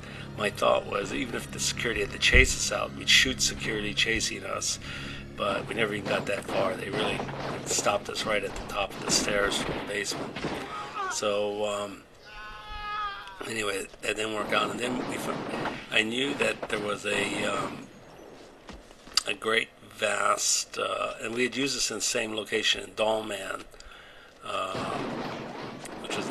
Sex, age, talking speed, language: male, 50-69, 170 wpm, English